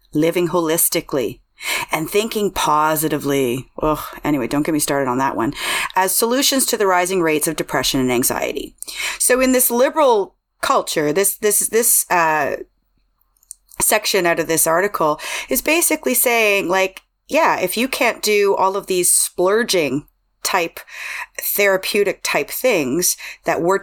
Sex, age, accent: female, 30-49, American